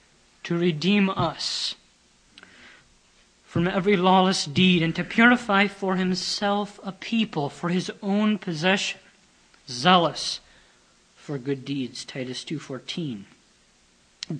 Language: English